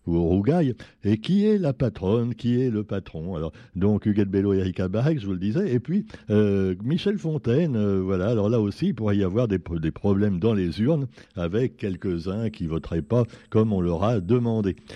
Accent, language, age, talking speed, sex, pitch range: French, French, 60-79, 215 wpm, male, 95-125 Hz